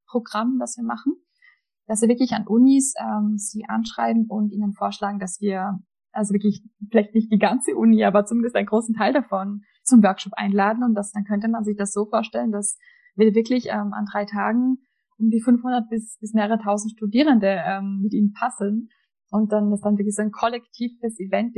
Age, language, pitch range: 20-39, German, 200-225 Hz